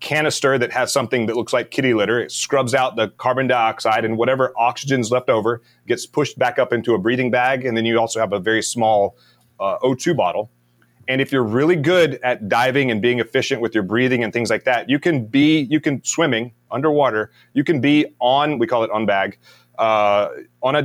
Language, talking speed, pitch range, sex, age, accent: English, 215 wpm, 105-130 Hz, male, 30-49, American